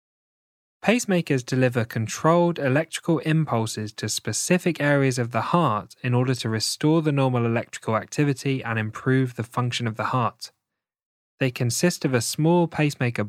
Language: English